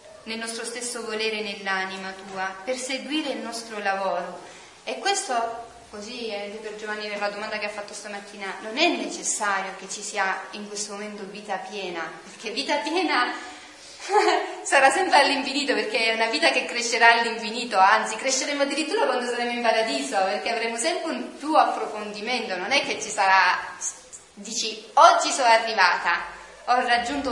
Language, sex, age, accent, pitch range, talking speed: Italian, female, 30-49, native, 195-280 Hz, 160 wpm